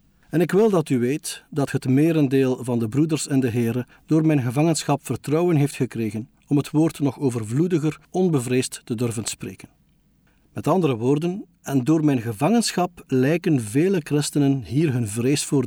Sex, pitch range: male, 125-160 Hz